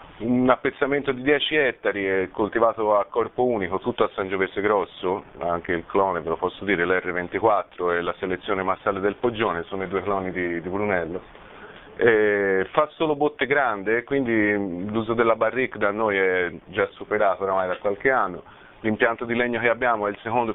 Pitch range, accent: 95-120 Hz, native